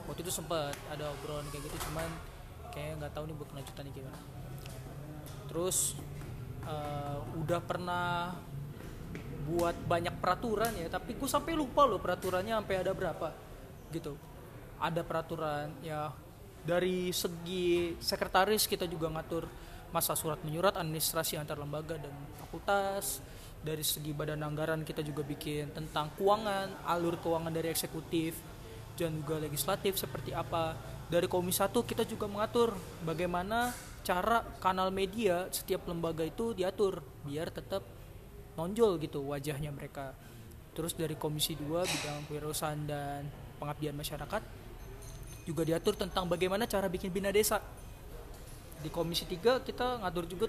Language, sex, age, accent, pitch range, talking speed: Indonesian, male, 20-39, native, 145-185 Hz, 135 wpm